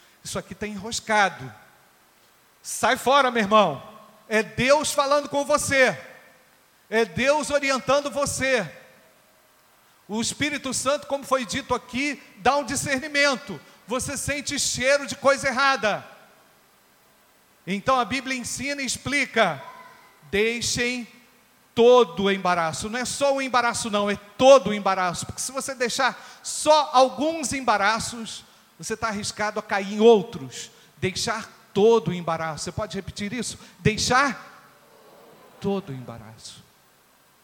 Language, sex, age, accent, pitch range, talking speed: Portuguese, male, 40-59, Brazilian, 180-260 Hz, 125 wpm